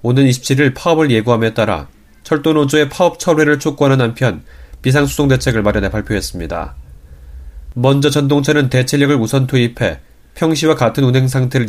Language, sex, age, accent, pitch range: Korean, male, 30-49, native, 105-145 Hz